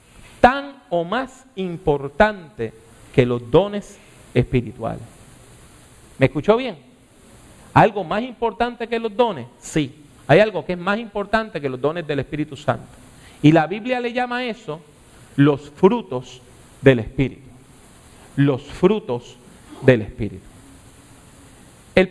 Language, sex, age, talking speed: English, male, 40-59, 125 wpm